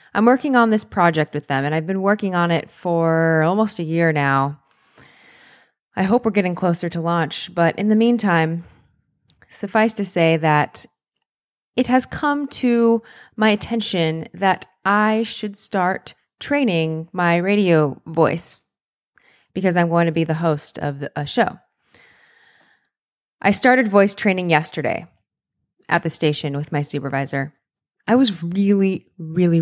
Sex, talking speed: female, 145 wpm